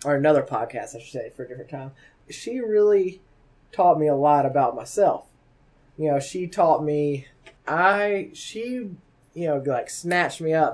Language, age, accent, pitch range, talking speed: English, 20-39, American, 130-150 Hz, 175 wpm